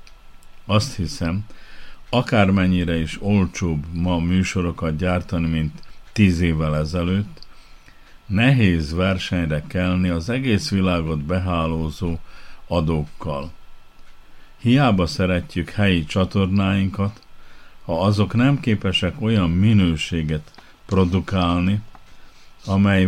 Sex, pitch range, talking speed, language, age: male, 85-105 Hz, 85 wpm, Hungarian, 50-69